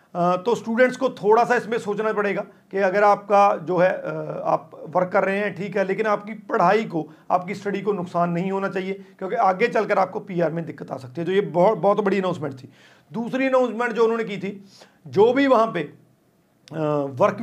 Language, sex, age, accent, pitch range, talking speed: Hindi, male, 40-59, native, 180-220 Hz, 205 wpm